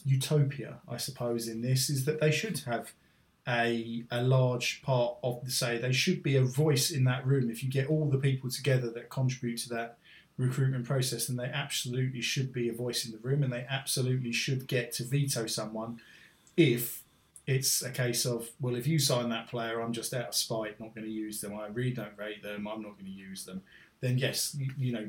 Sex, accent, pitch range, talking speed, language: male, British, 115-135 Hz, 220 wpm, English